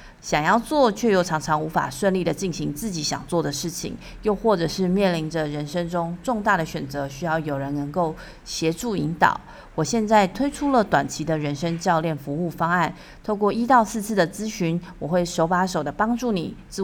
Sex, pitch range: female, 160-205 Hz